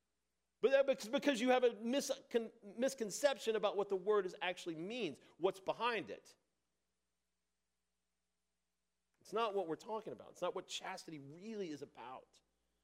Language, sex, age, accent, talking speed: English, male, 40-59, American, 140 wpm